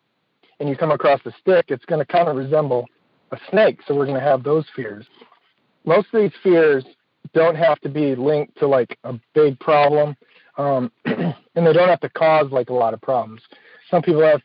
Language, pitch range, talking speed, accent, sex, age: English, 135-165 Hz, 210 wpm, American, male, 40-59